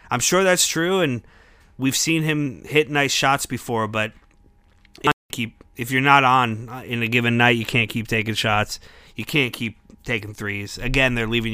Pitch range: 110-135 Hz